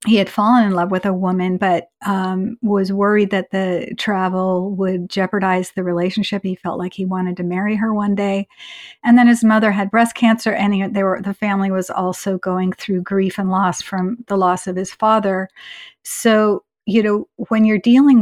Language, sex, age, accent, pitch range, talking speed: English, female, 50-69, American, 185-215 Hz, 200 wpm